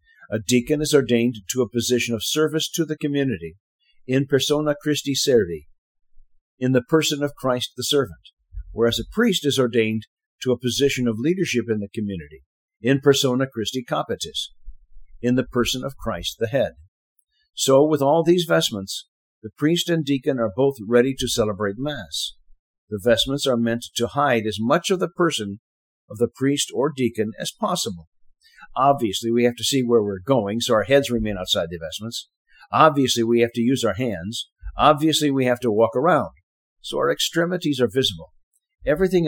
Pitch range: 110-145 Hz